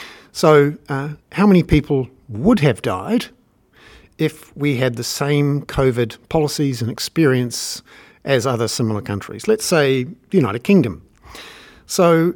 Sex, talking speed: male, 130 wpm